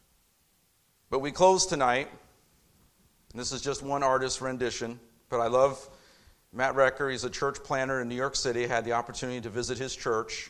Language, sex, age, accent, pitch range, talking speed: English, male, 50-69, American, 110-130 Hz, 170 wpm